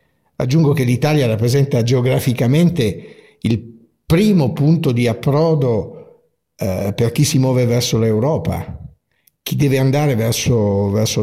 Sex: male